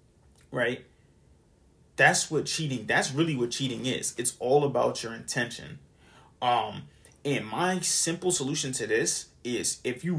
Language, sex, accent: English, male, American